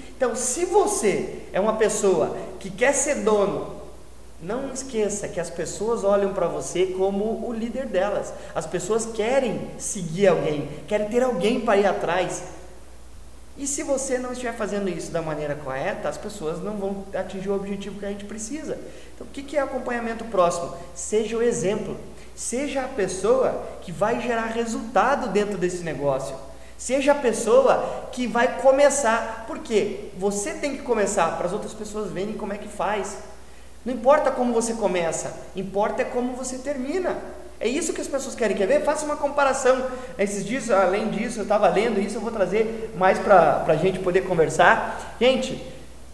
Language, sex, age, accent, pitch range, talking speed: Portuguese, male, 20-39, Brazilian, 190-255 Hz, 170 wpm